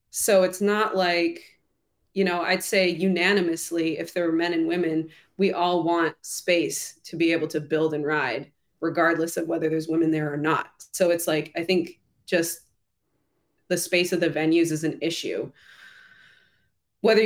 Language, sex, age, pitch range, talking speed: English, female, 20-39, 165-205 Hz, 170 wpm